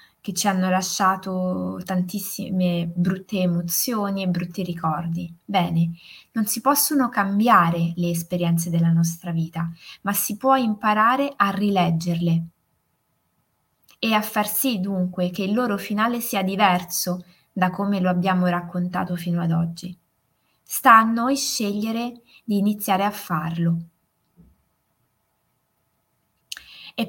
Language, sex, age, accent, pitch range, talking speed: Italian, female, 20-39, native, 175-220 Hz, 120 wpm